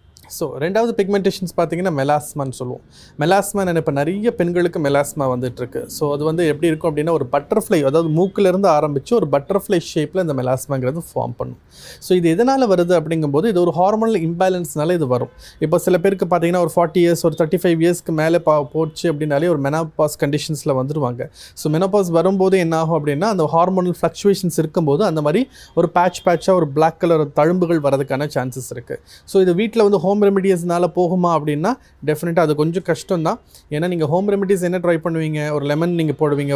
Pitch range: 150-185 Hz